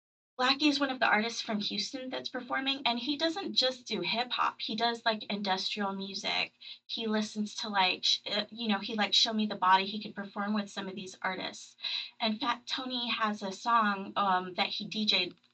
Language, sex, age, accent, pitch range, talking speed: English, female, 20-39, American, 190-235 Hz, 200 wpm